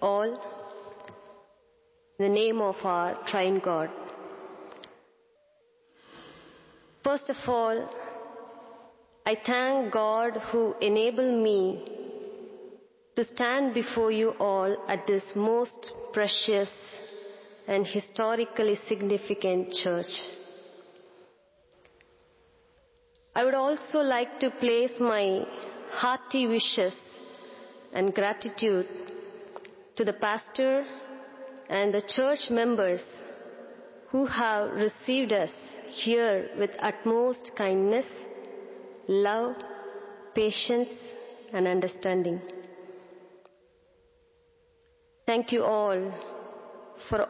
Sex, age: female, 30-49